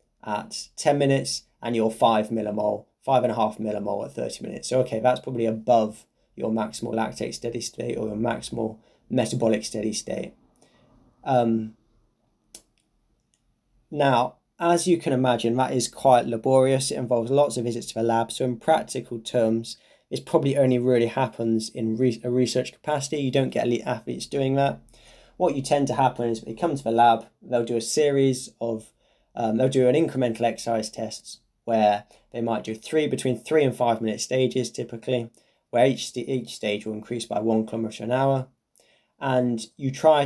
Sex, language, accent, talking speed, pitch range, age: male, English, British, 175 wpm, 115-130 Hz, 20-39